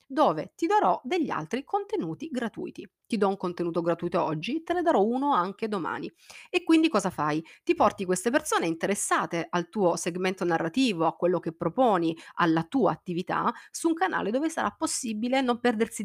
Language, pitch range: Italian, 170-245 Hz